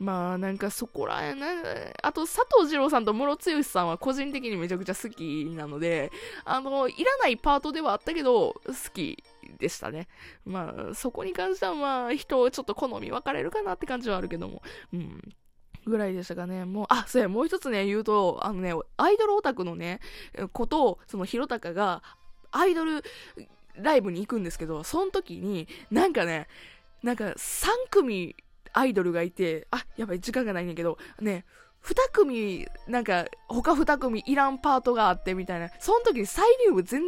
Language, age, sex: Japanese, 20-39, female